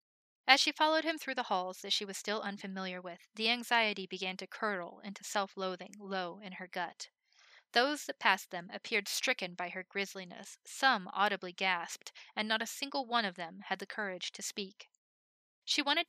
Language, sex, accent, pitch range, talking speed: English, female, American, 185-225 Hz, 185 wpm